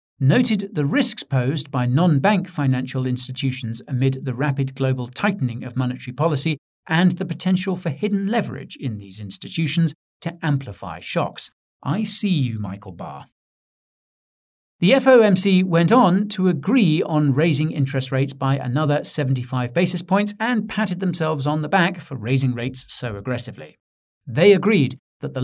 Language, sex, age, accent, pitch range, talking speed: English, male, 50-69, British, 130-185 Hz, 150 wpm